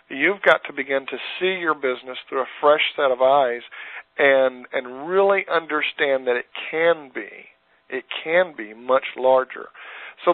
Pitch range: 120-150 Hz